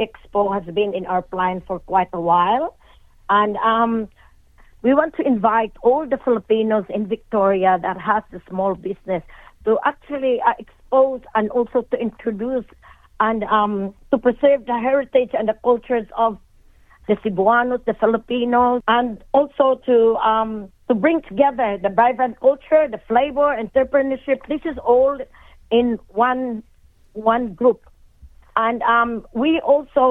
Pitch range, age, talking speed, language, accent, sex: 215-255 Hz, 40-59, 145 wpm, Filipino, native, female